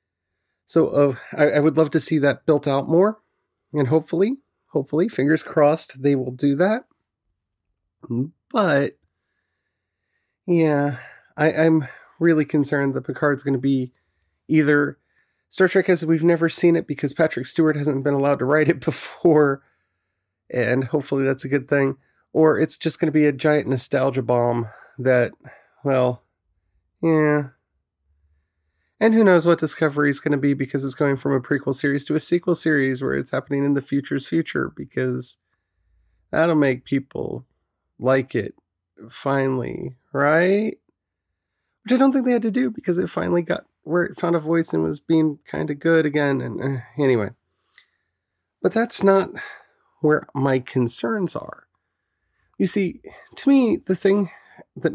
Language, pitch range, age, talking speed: English, 125-165 Hz, 30-49, 155 wpm